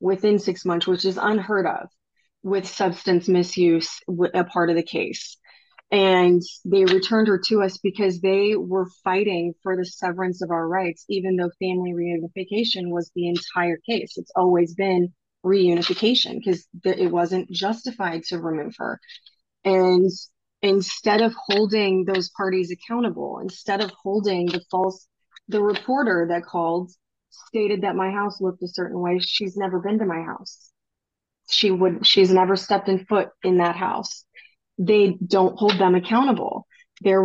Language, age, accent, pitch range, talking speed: English, 30-49, American, 180-200 Hz, 155 wpm